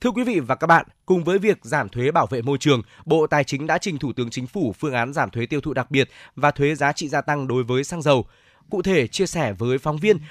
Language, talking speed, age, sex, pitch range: Vietnamese, 285 wpm, 20-39, male, 130-160 Hz